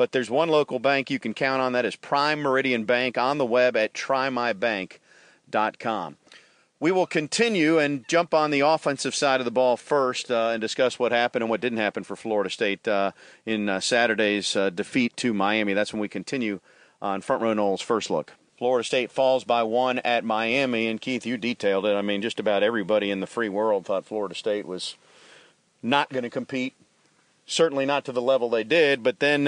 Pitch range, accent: 110-135 Hz, American